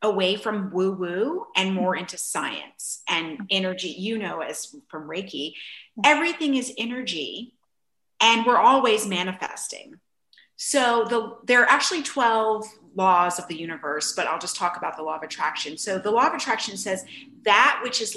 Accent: American